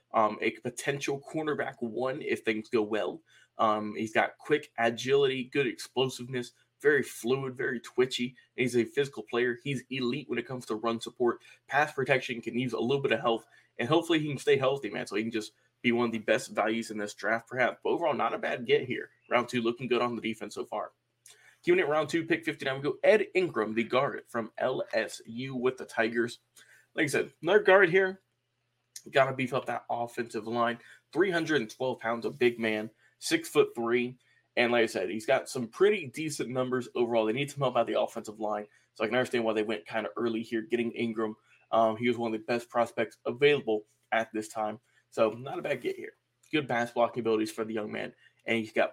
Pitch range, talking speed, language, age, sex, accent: 115-135 Hz, 215 wpm, English, 20-39, male, American